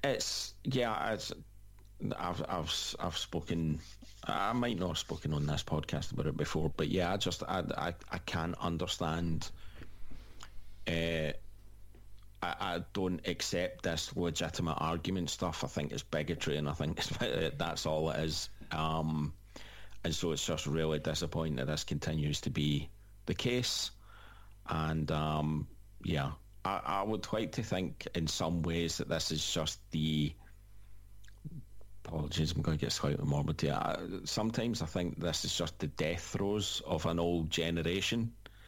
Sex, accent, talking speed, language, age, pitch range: male, British, 155 wpm, English, 40-59, 80-100 Hz